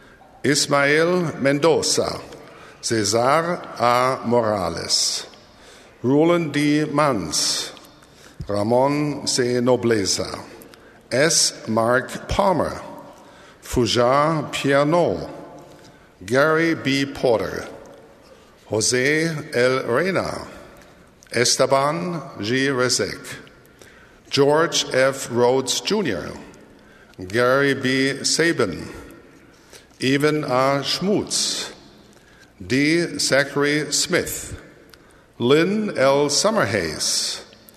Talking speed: 65 wpm